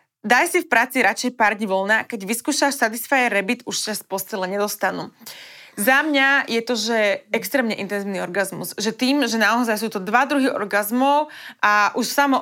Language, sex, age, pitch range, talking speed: Slovak, female, 20-39, 205-250 Hz, 180 wpm